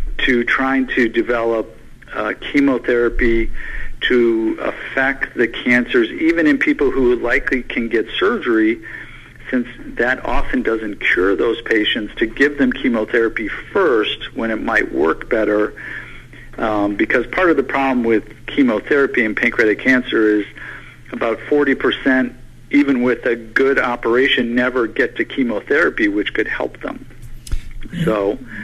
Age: 50-69